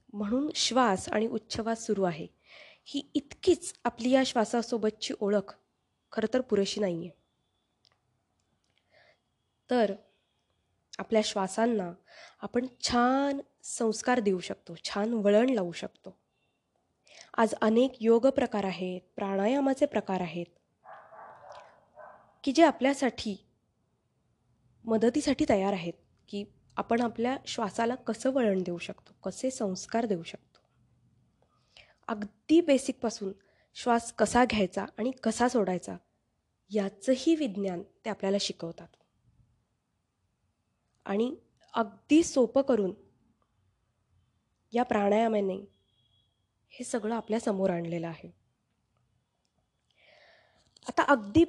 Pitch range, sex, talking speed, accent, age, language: 185-245 Hz, female, 95 wpm, native, 20-39, Marathi